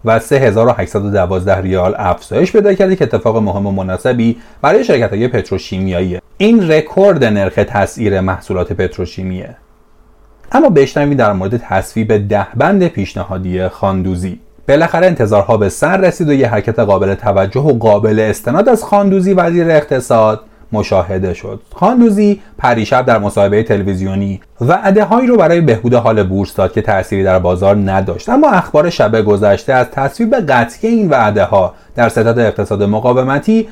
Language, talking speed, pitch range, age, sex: Persian, 145 wpm, 100-155 Hz, 30-49, male